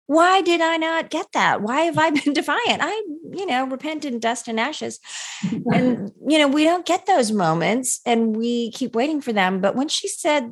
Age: 40-59